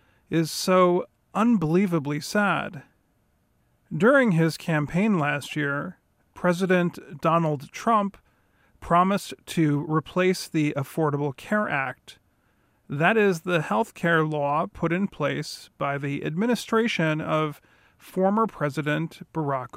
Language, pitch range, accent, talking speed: English, 150-195 Hz, American, 105 wpm